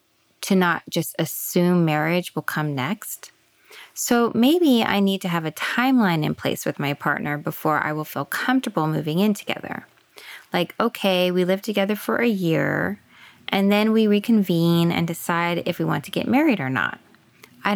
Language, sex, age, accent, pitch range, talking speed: English, female, 20-39, American, 165-215 Hz, 175 wpm